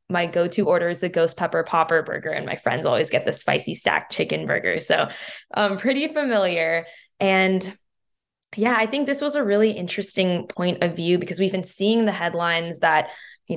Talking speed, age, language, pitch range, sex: 195 wpm, 10-29, English, 165-200 Hz, female